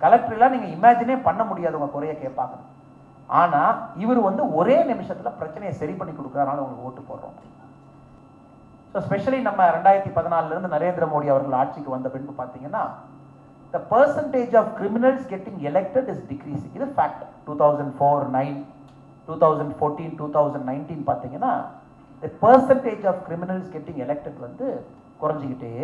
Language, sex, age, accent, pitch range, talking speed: Tamil, male, 30-49, native, 140-200 Hz, 130 wpm